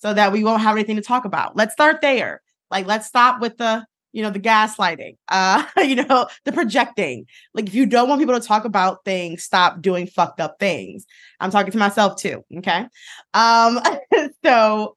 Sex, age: female, 20-39